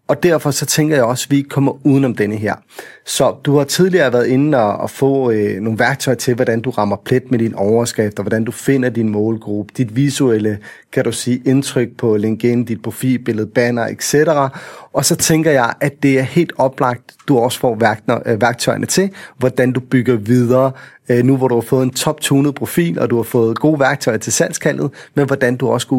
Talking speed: 210 wpm